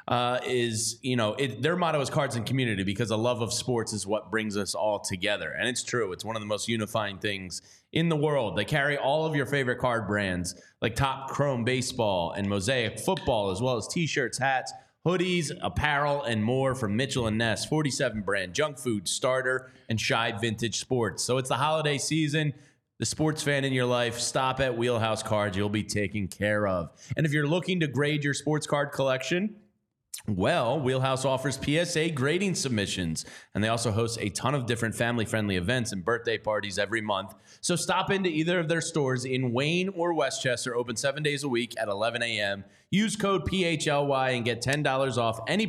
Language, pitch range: English, 110-145 Hz